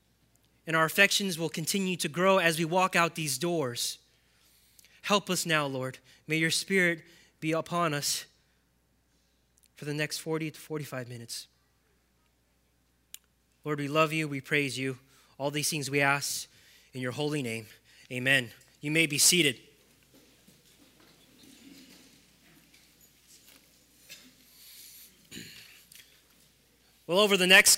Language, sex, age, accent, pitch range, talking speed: English, male, 20-39, American, 140-185 Hz, 120 wpm